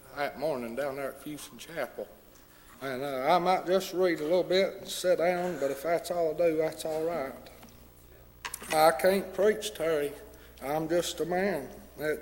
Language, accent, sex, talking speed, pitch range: English, American, male, 180 wpm, 140-175 Hz